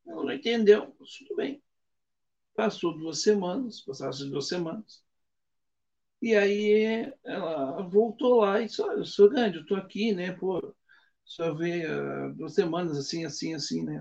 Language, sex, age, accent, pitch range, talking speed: Portuguese, male, 60-79, Brazilian, 165-225 Hz, 155 wpm